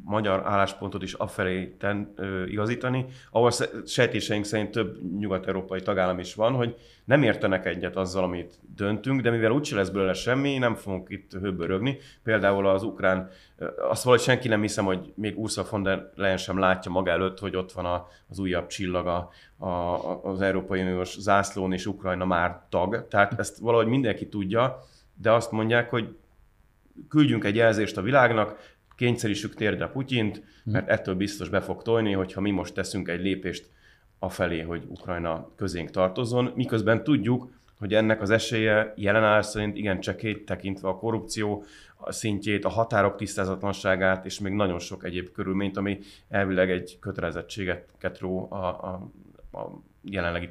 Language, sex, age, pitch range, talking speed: Hungarian, male, 30-49, 95-110 Hz, 150 wpm